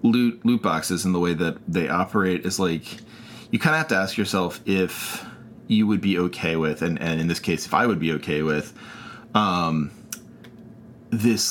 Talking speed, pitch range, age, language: 195 wpm, 85-115 Hz, 30-49, English